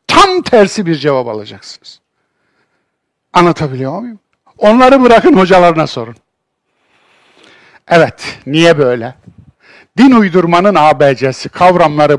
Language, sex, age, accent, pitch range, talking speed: Turkish, male, 60-79, native, 140-225 Hz, 90 wpm